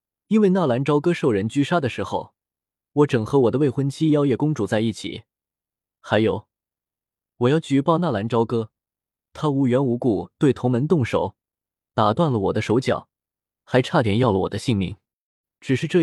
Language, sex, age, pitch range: Chinese, male, 20-39, 115-165 Hz